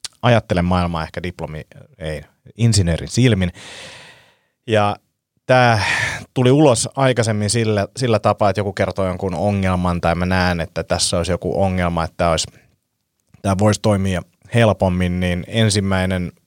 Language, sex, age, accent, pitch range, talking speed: Finnish, male, 30-49, native, 85-105 Hz, 130 wpm